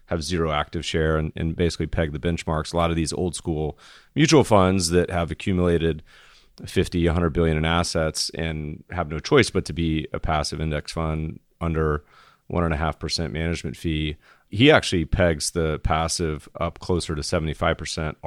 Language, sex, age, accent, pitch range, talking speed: English, male, 30-49, American, 80-95 Hz, 175 wpm